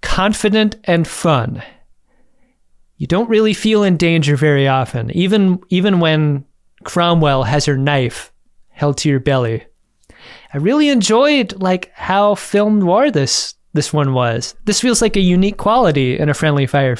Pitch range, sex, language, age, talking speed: 145-185 Hz, male, English, 20-39, 150 wpm